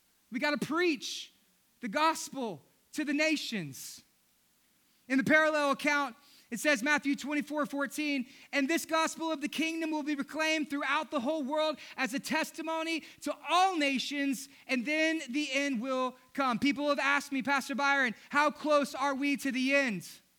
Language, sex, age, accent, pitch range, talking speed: English, male, 30-49, American, 250-290 Hz, 165 wpm